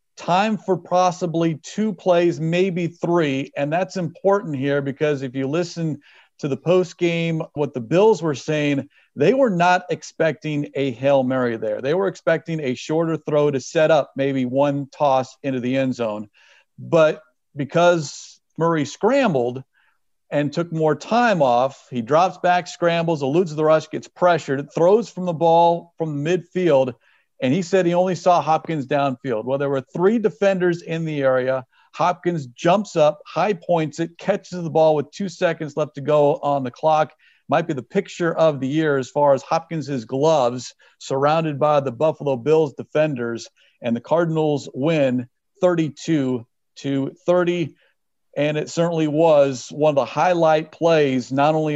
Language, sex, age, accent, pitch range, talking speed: English, male, 40-59, American, 135-170 Hz, 165 wpm